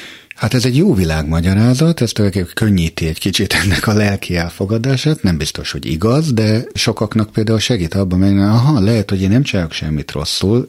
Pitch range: 85-115 Hz